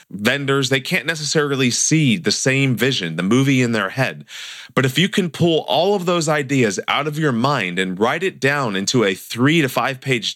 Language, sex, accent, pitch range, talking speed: English, male, American, 115-145 Hz, 210 wpm